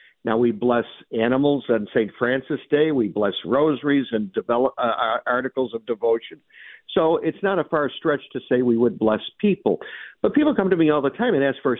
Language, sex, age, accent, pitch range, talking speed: English, male, 60-79, American, 120-155 Hz, 200 wpm